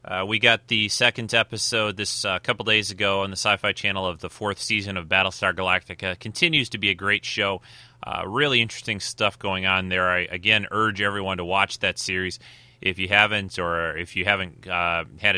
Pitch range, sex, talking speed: 95-120 Hz, male, 205 wpm